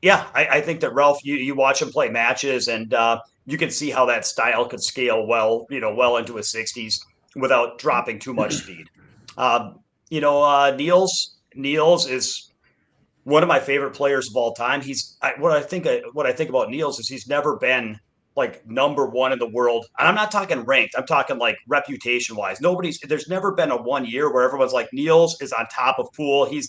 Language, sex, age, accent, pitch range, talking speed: English, male, 30-49, American, 130-190 Hz, 215 wpm